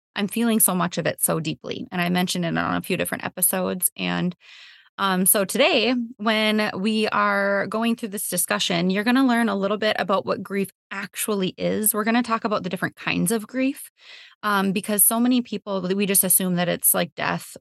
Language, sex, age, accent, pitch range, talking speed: English, female, 20-39, American, 180-230 Hz, 210 wpm